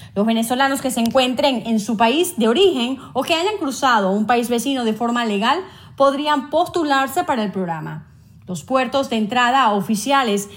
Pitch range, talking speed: 220-275 Hz, 170 wpm